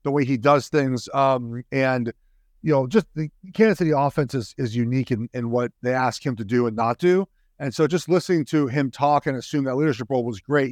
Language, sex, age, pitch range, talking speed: English, male, 40-59, 125-165 Hz, 235 wpm